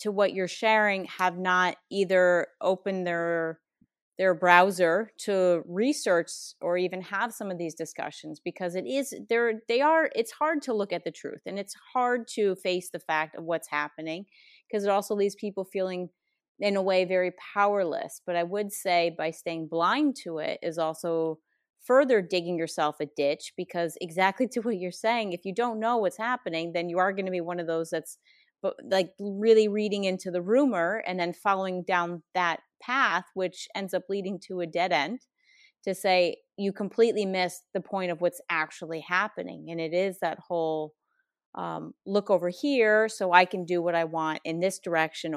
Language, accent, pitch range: English, American, 170-205 Hz